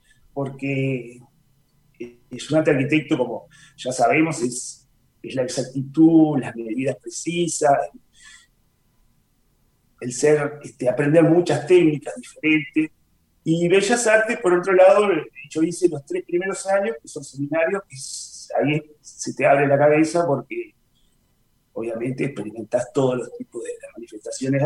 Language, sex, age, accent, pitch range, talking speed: Spanish, male, 40-59, Argentinian, 135-175 Hz, 125 wpm